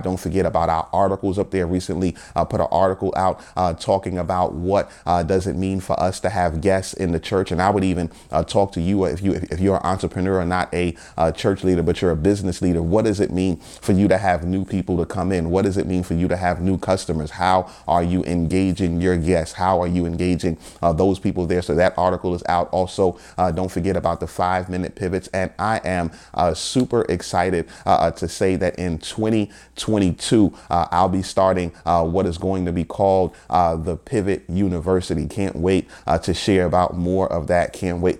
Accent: American